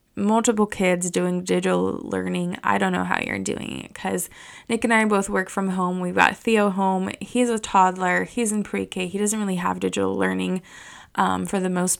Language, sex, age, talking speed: English, female, 20-39, 200 wpm